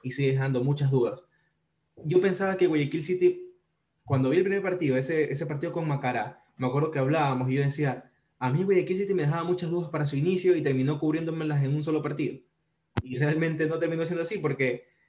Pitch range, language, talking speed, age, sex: 130-160 Hz, Spanish, 205 wpm, 20-39, male